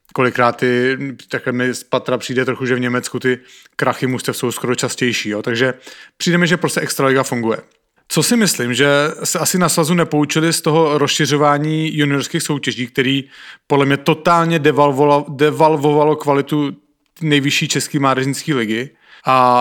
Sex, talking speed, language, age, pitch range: male, 150 wpm, English, 30-49, 135-160 Hz